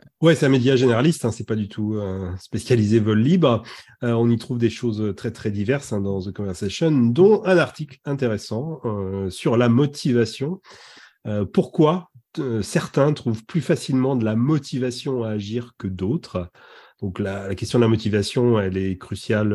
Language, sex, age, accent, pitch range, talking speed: French, male, 30-49, French, 105-135 Hz, 180 wpm